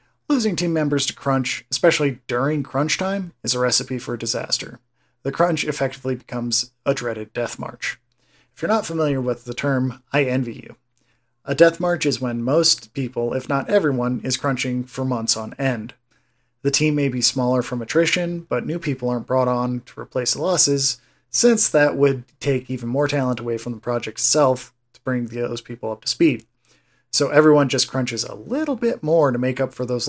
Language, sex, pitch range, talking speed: English, male, 120-145 Hz, 195 wpm